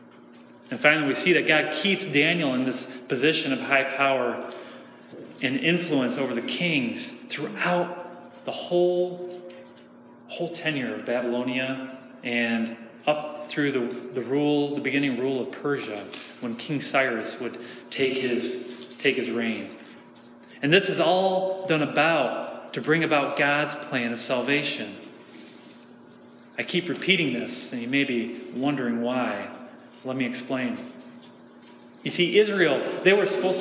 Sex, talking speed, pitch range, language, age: male, 140 wpm, 120-160 Hz, English, 30-49